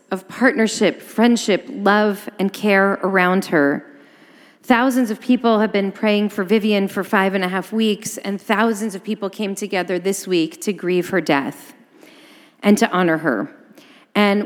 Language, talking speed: English, 160 wpm